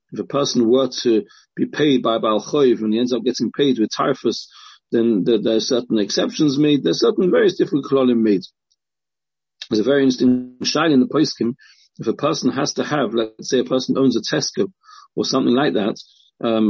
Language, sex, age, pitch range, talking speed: English, male, 40-59, 125-160 Hz, 205 wpm